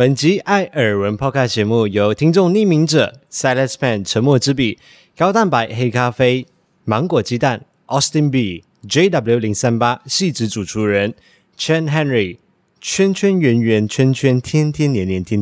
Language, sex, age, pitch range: Chinese, male, 30-49, 105-160 Hz